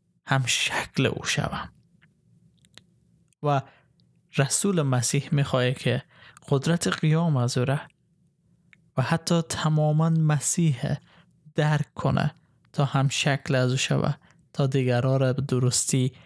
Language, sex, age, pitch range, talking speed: Persian, male, 20-39, 135-160 Hz, 115 wpm